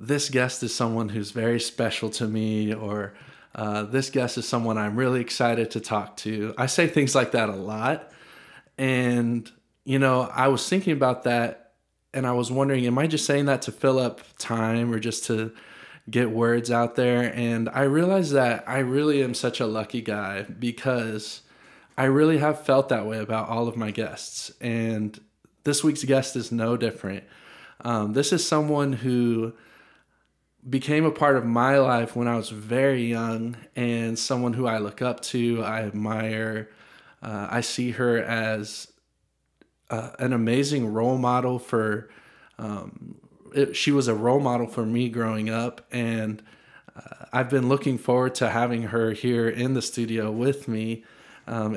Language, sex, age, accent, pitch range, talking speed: English, male, 20-39, American, 110-130 Hz, 170 wpm